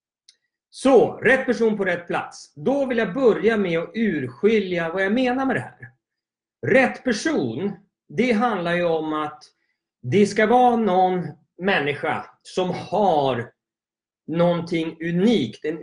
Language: Swedish